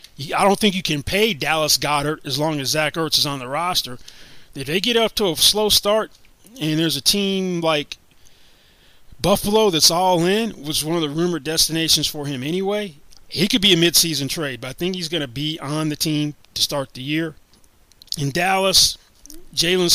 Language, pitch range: English, 140-175 Hz